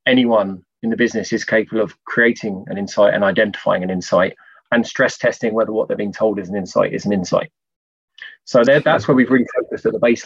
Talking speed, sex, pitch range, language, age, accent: 215 wpm, male, 105-120 Hz, English, 20-39, British